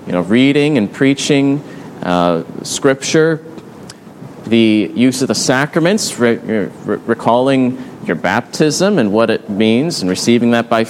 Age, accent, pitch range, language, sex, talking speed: 30-49, American, 120-150 Hz, English, male, 140 wpm